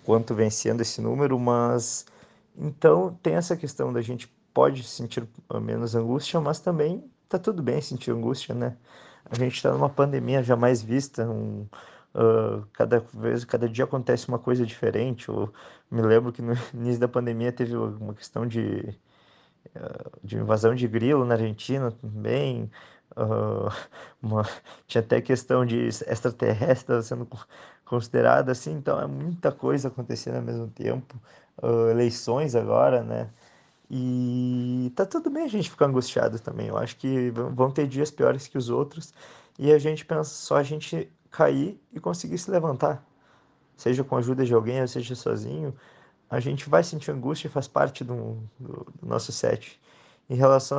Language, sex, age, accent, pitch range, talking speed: Portuguese, male, 20-39, Brazilian, 115-140 Hz, 160 wpm